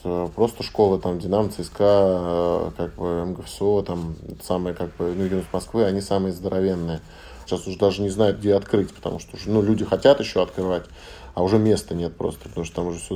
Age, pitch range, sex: 20-39, 90-110 Hz, male